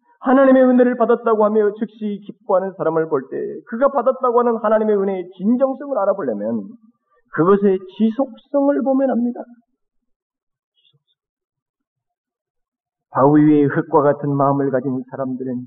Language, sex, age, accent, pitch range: Korean, male, 40-59, native, 195-280 Hz